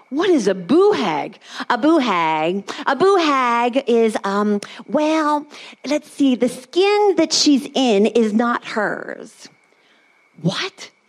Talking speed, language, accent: 135 wpm, English, American